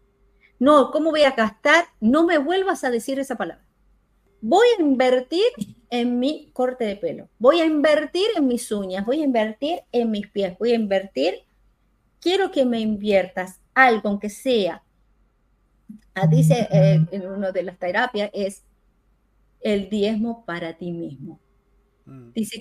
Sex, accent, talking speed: female, American, 150 wpm